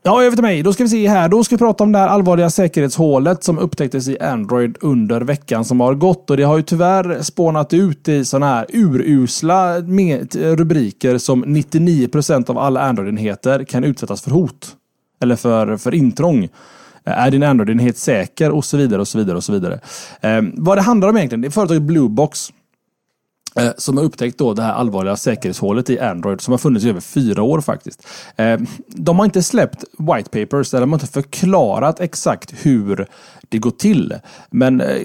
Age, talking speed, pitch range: 20-39, 185 wpm, 125-185 Hz